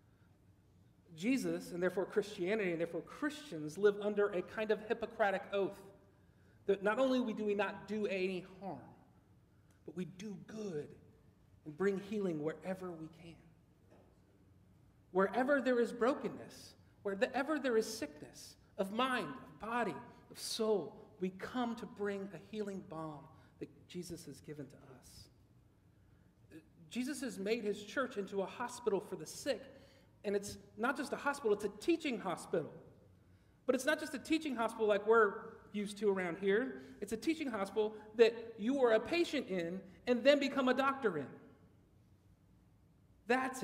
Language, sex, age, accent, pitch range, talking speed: English, male, 40-59, American, 160-230 Hz, 155 wpm